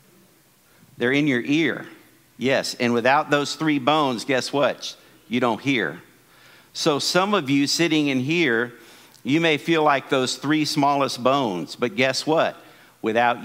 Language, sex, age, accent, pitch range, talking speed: English, male, 50-69, American, 120-155 Hz, 150 wpm